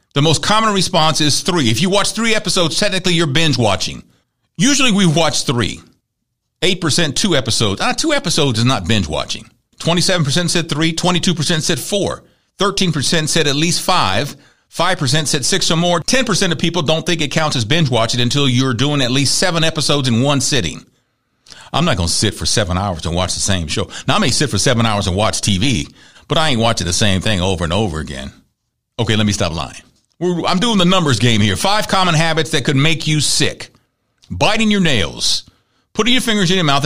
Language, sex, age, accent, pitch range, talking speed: English, male, 50-69, American, 120-190 Hz, 205 wpm